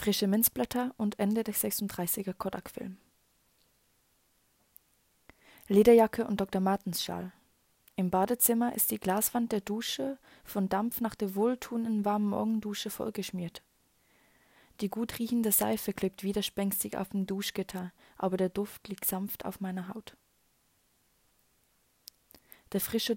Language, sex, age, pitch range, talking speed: German, female, 20-39, 195-225 Hz, 120 wpm